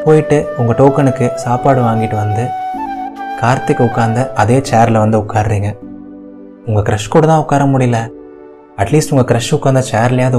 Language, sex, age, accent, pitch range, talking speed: Tamil, male, 20-39, native, 115-145 Hz, 135 wpm